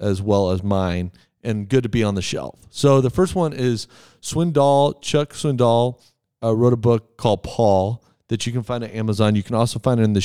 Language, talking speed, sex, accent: English, 225 wpm, male, American